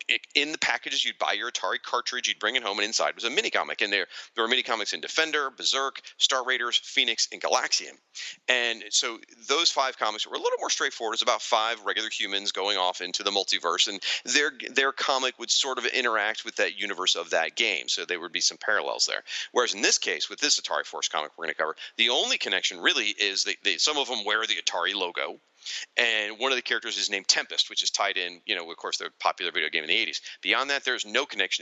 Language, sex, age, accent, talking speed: English, male, 40-59, American, 240 wpm